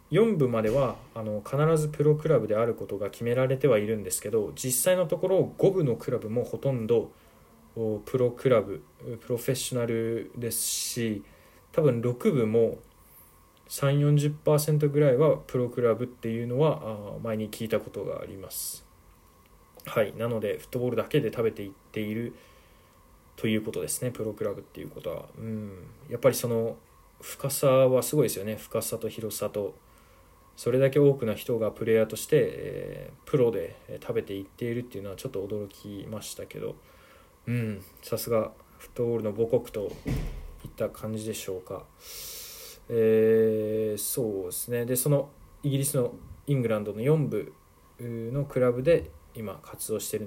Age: 20-39